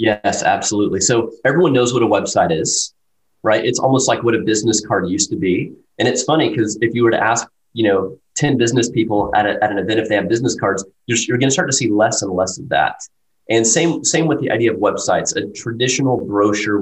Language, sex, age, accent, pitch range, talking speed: English, male, 30-49, American, 105-125 Hz, 240 wpm